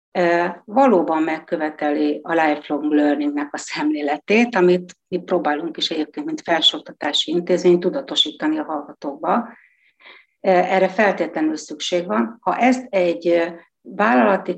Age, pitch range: 60-79, 160-205 Hz